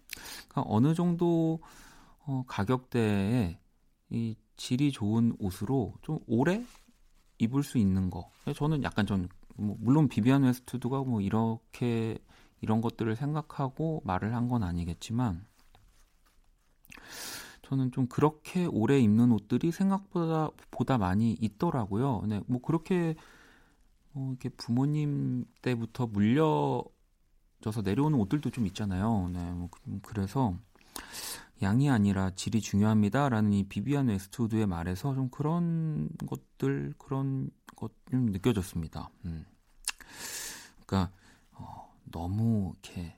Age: 40-59